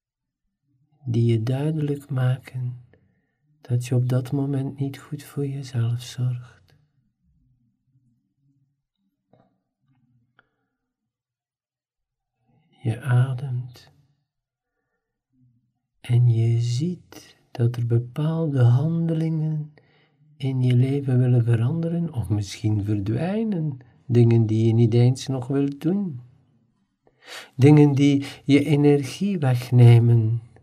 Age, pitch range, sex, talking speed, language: 50-69, 120-145 Hz, male, 85 wpm, Dutch